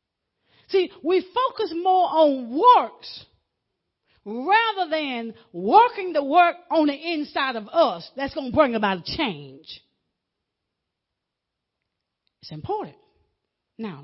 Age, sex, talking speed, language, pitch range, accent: 40-59, female, 110 wpm, English, 225-330 Hz, American